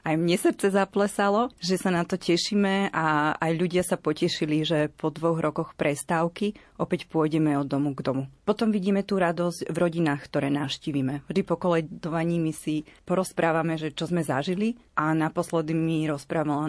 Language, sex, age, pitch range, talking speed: Slovak, female, 30-49, 155-180 Hz, 170 wpm